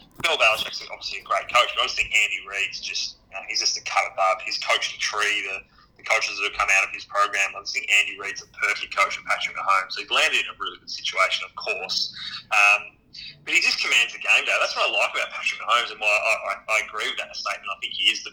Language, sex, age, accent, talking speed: English, male, 30-49, Australian, 265 wpm